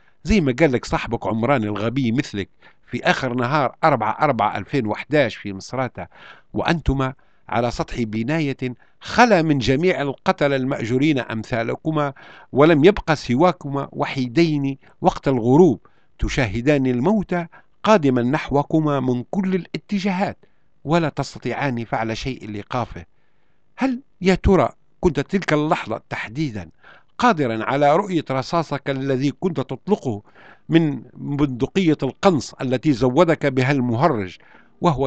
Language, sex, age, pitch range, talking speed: Arabic, male, 60-79, 125-165 Hz, 110 wpm